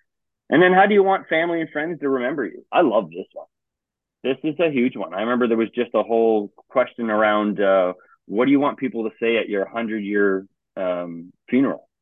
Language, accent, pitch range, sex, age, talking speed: English, American, 105-130 Hz, male, 30-49, 210 wpm